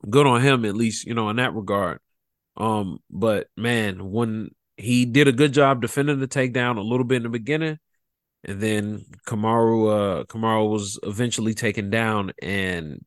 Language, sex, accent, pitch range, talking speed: English, male, American, 100-120 Hz, 175 wpm